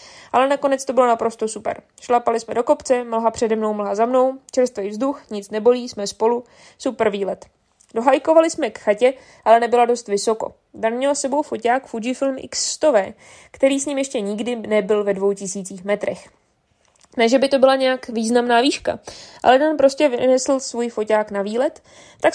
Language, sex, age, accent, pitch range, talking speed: Czech, female, 20-39, native, 220-270 Hz, 175 wpm